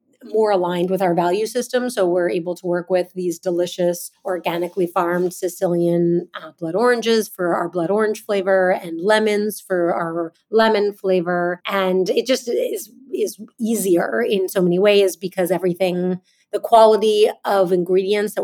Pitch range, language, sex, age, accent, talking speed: 175-210 Hz, English, female, 30-49, American, 155 wpm